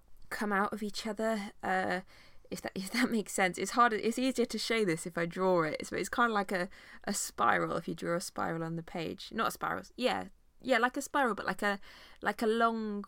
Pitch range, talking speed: 165-200 Hz, 245 wpm